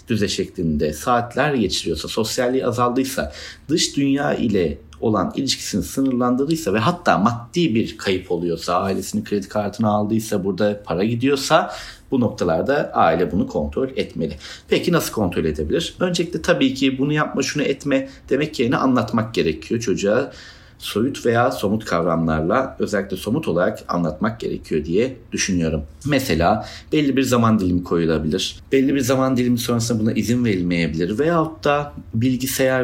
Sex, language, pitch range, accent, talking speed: male, Turkish, 95-130 Hz, native, 135 wpm